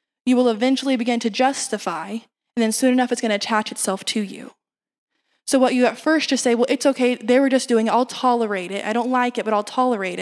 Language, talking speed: English, 245 wpm